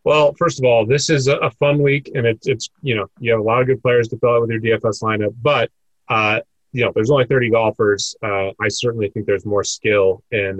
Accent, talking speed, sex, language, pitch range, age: American, 250 wpm, male, English, 105-135 Hz, 30-49